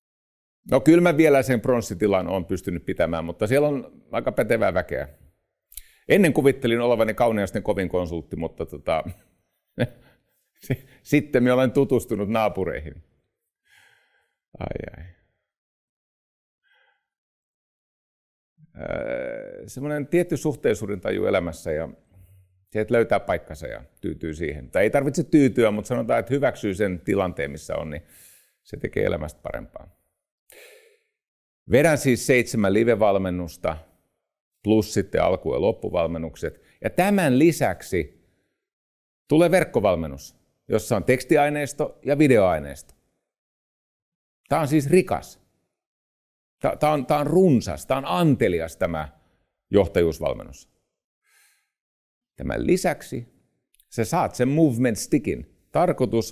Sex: male